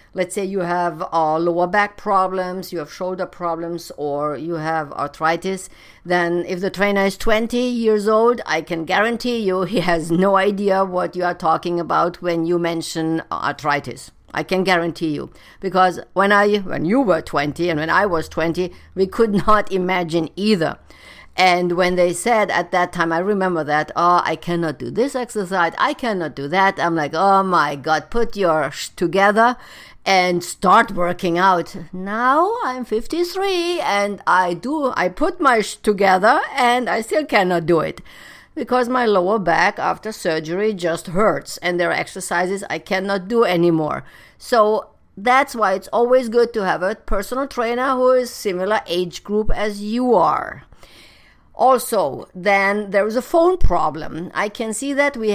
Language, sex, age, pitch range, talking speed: English, female, 50-69, 170-215 Hz, 170 wpm